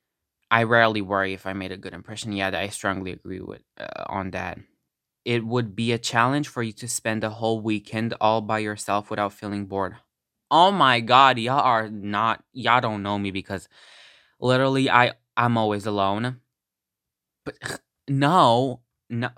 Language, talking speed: English, 165 wpm